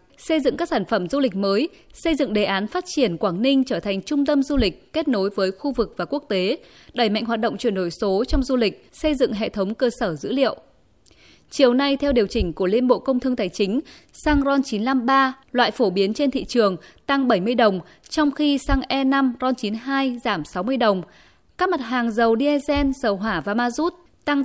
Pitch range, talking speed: 195-275 Hz, 225 wpm